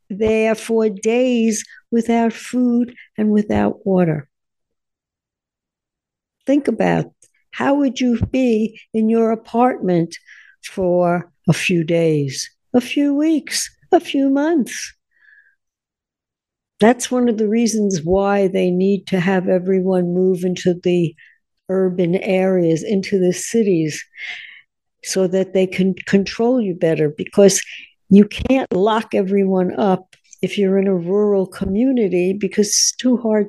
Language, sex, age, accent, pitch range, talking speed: English, female, 60-79, American, 185-225 Hz, 125 wpm